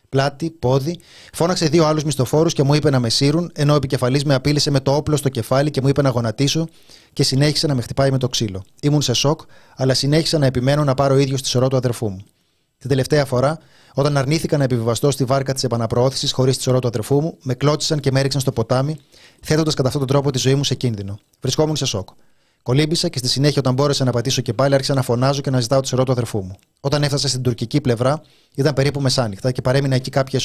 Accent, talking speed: native, 235 wpm